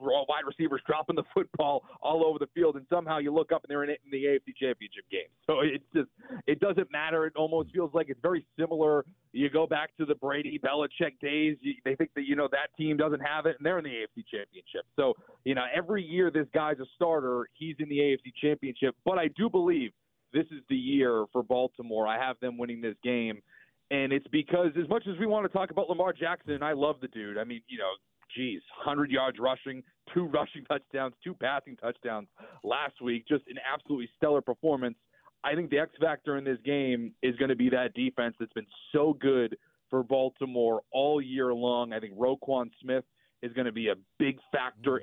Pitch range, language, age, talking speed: 125-160 Hz, English, 30-49, 215 wpm